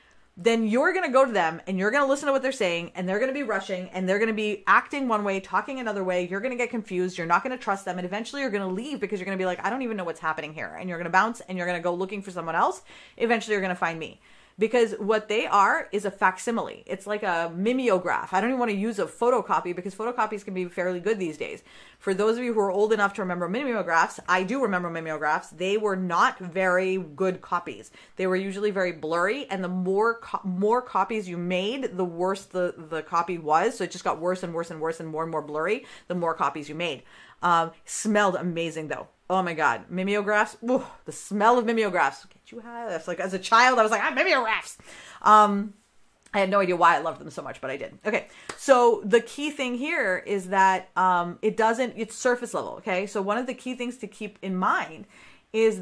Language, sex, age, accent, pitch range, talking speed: English, female, 30-49, American, 180-230 Hz, 240 wpm